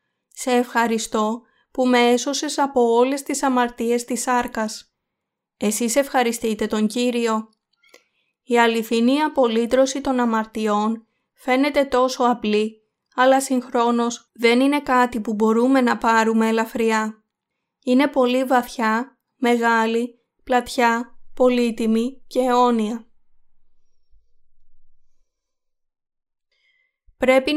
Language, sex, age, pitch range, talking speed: Greek, female, 20-39, 225-260 Hz, 90 wpm